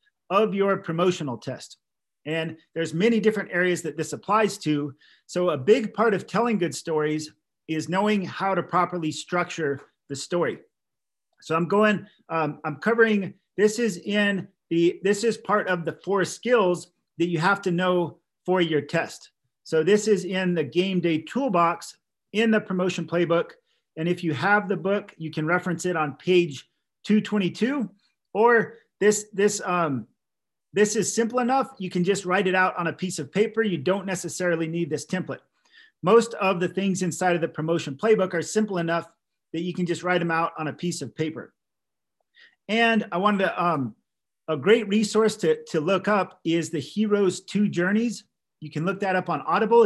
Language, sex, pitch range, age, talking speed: English, male, 165-210 Hz, 40-59, 185 wpm